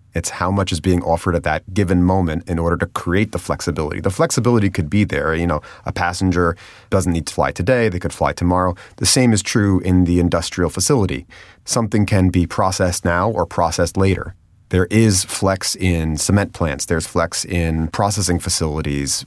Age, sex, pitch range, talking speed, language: 30-49, male, 85-100 Hz, 190 wpm, English